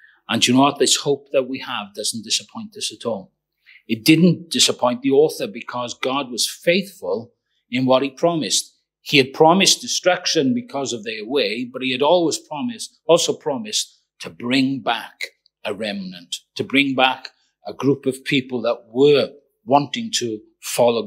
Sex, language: male, English